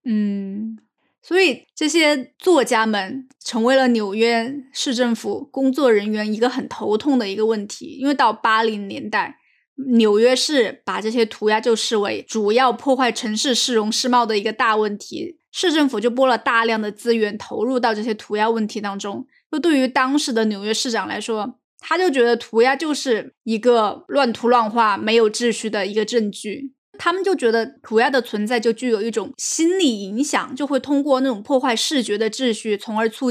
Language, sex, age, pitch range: Chinese, female, 20-39, 220-265 Hz